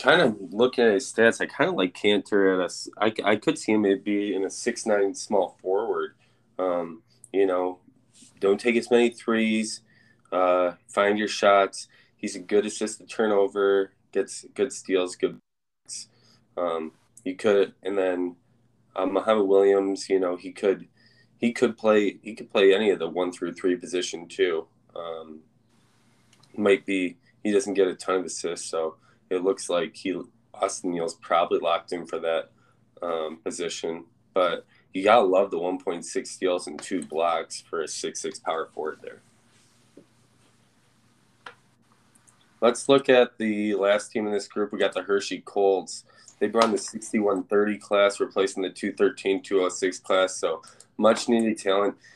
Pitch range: 95-115 Hz